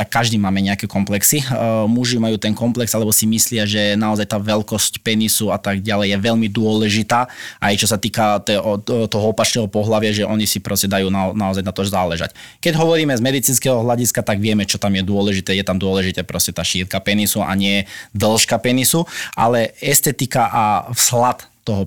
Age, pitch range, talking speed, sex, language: 20-39, 105-135 Hz, 180 wpm, male, Slovak